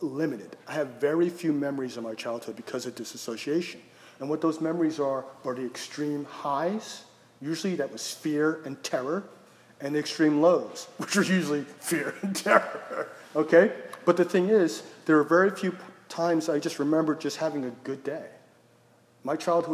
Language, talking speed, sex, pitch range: English, 175 wpm, male, 135-170 Hz